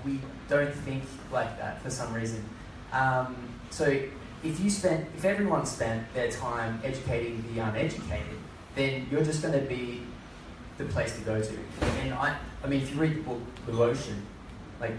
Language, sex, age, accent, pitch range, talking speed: English, male, 20-39, Australian, 115-135 Hz, 170 wpm